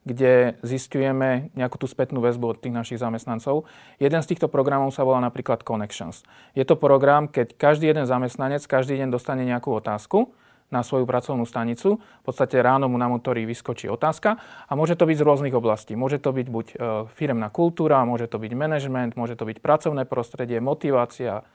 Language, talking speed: Slovak, 180 wpm